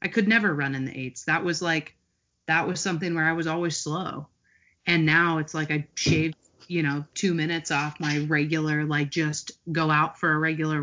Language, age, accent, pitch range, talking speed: English, 30-49, American, 145-170 Hz, 210 wpm